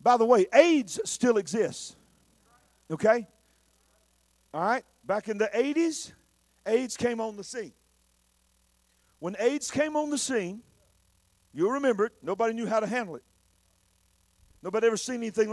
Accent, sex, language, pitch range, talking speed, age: American, male, English, 160-250 Hz, 145 wpm, 50-69